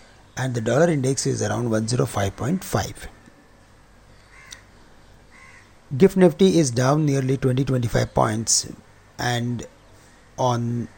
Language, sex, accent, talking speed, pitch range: English, male, Indian, 85 wpm, 115-145 Hz